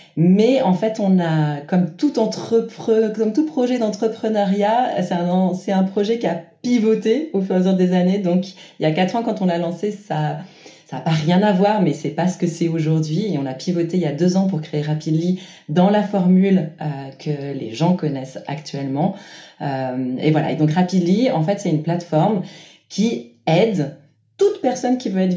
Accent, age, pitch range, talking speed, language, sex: French, 30-49, 155-195 Hz, 210 wpm, French, female